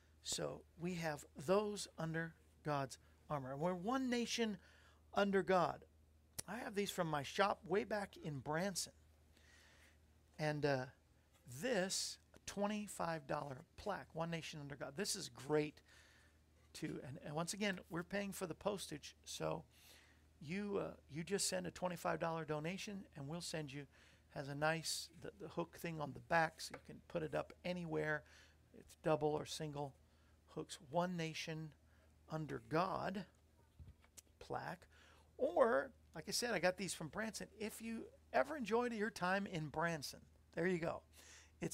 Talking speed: 150 wpm